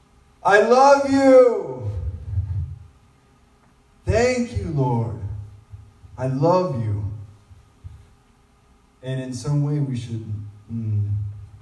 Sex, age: male, 20-39